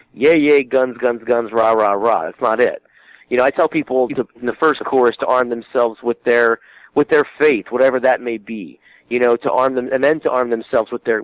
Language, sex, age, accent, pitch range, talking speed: English, male, 40-59, American, 115-135 Hz, 240 wpm